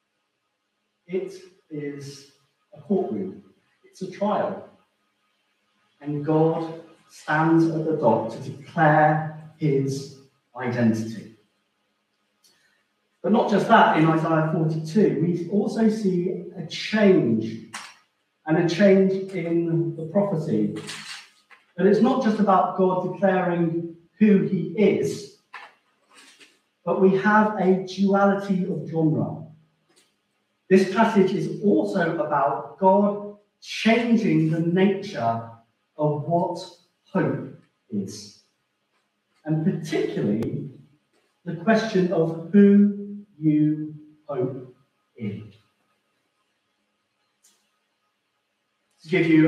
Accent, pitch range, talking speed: British, 155-190 Hz, 95 wpm